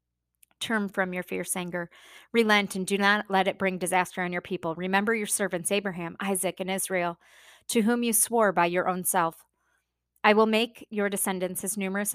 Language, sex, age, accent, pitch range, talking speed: English, female, 20-39, American, 175-205 Hz, 190 wpm